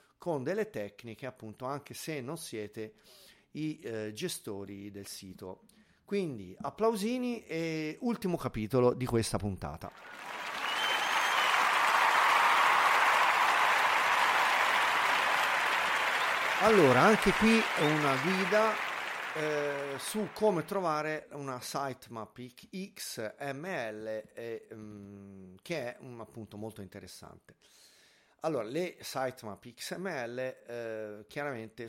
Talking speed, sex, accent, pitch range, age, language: 90 wpm, male, native, 105-150 Hz, 50-69, Italian